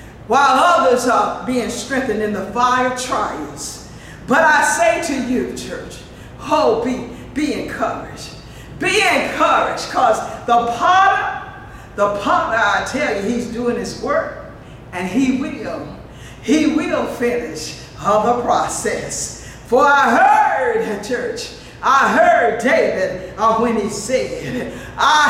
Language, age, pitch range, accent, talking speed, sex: English, 50-69, 225-305 Hz, American, 130 wpm, female